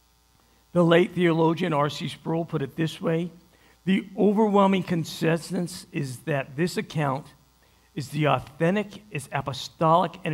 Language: English